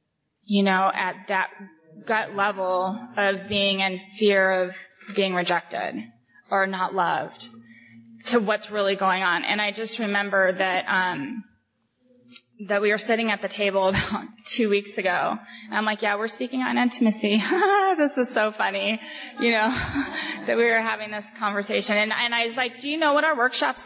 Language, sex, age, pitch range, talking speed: English, female, 20-39, 195-235 Hz, 175 wpm